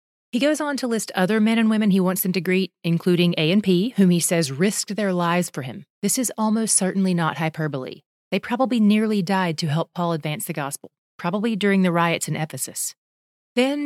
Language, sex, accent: English, female, American